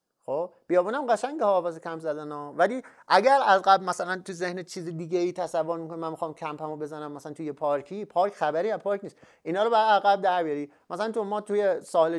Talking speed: 210 wpm